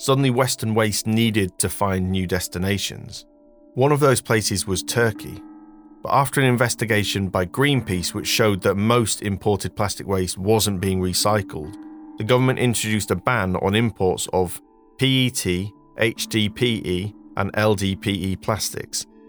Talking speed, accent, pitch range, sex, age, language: 135 wpm, British, 95-125 Hz, male, 40-59, English